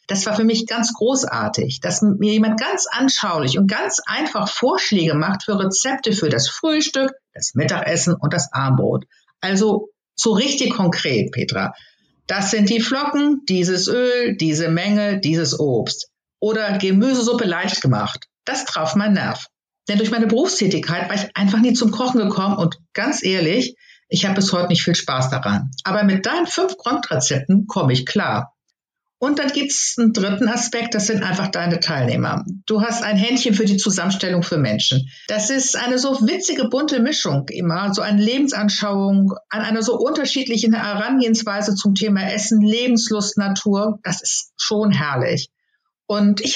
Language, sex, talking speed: German, female, 165 wpm